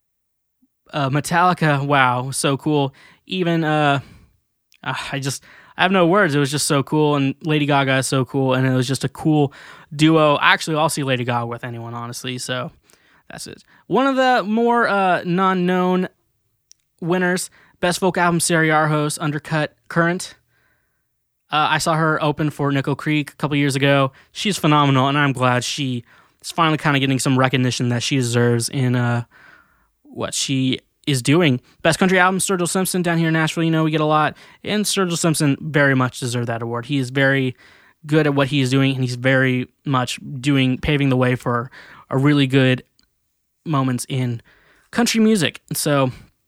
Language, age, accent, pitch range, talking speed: English, 20-39, American, 135-165 Hz, 180 wpm